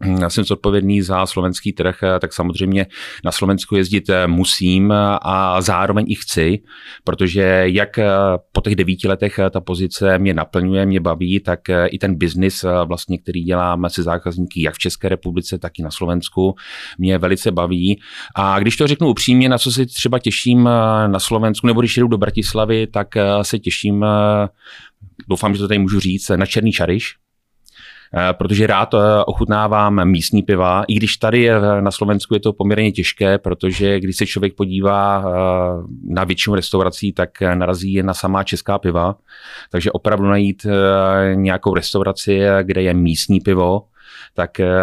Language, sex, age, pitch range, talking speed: Czech, male, 30-49, 95-110 Hz, 155 wpm